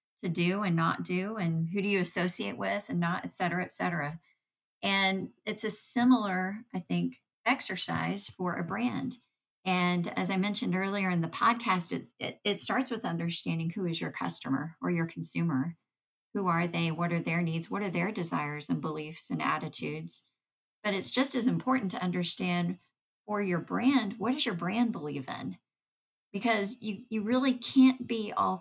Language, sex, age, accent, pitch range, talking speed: English, female, 40-59, American, 165-205 Hz, 180 wpm